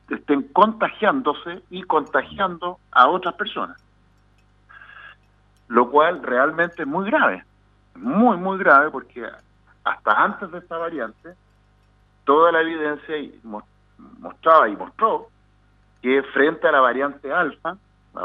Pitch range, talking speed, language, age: 105-150 Hz, 115 wpm, Spanish, 40-59